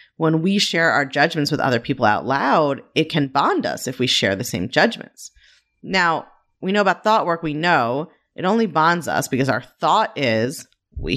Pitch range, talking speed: 130-180 Hz, 200 wpm